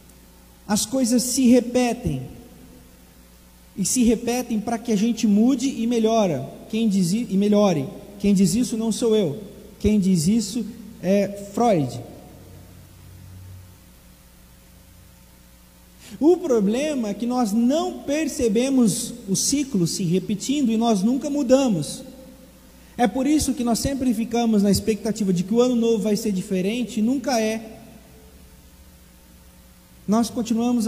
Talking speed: 130 wpm